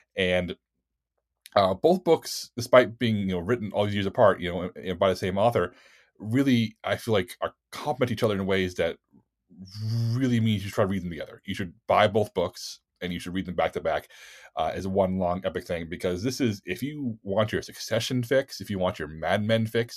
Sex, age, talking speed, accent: male, 30-49, 225 wpm, American